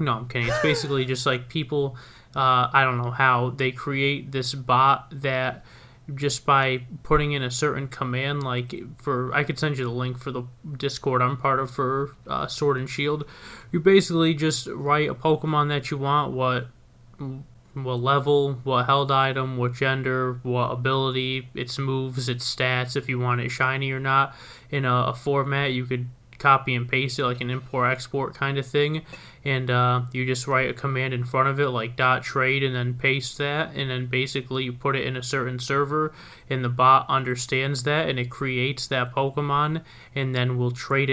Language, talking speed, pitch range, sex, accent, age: English, 195 wpm, 125-140 Hz, male, American, 20-39